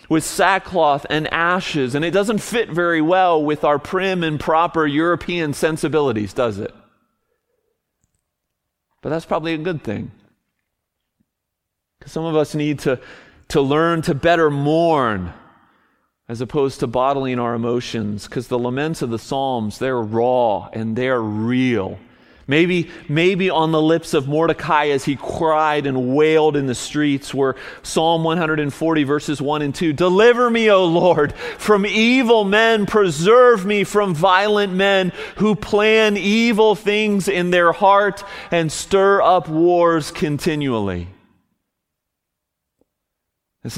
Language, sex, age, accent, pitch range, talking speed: English, male, 40-59, American, 135-185 Hz, 135 wpm